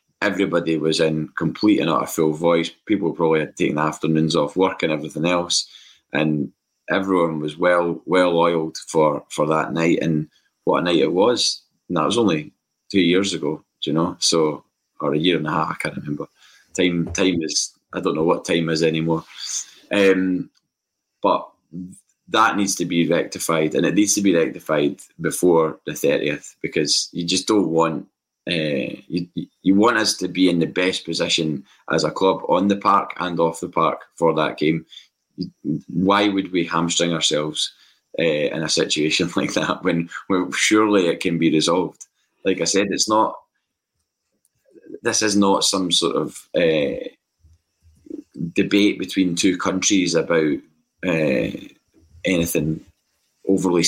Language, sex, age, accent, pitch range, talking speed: English, male, 20-39, British, 80-95 Hz, 165 wpm